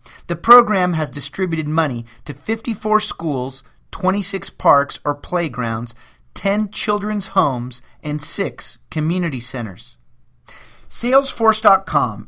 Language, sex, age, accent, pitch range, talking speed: English, male, 30-49, American, 130-195 Hz, 100 wpm